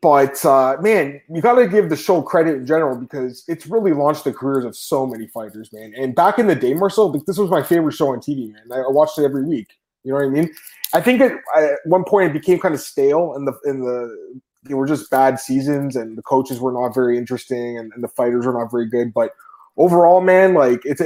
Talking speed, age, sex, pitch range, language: 240 wpm, 20-39, male, 130-160 Hz, English